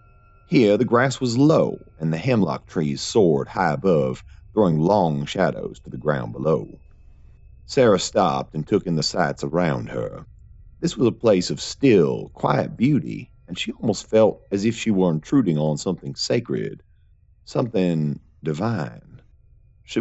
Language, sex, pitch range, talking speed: English, male, 65-95 Hz, 155 wpm